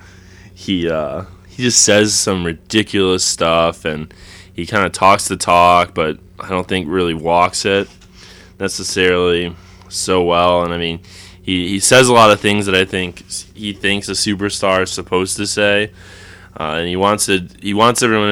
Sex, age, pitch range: male, 20-39, 90-105 Hz